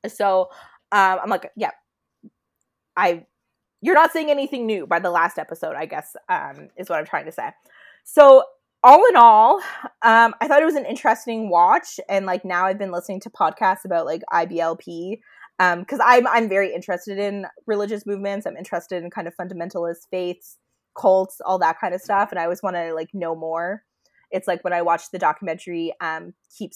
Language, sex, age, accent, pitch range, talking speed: English, female, 20-39, American, 170-225 Hz, 195 wpm